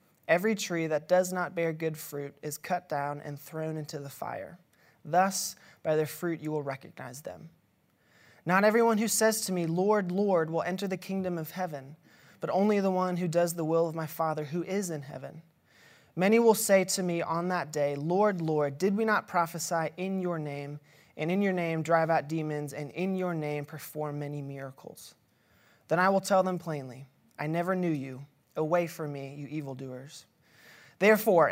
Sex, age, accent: male, 20-39, American